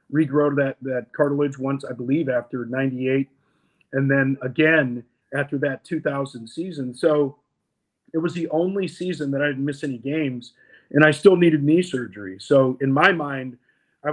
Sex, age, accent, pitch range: male, 40-59, American, 125-145 Hz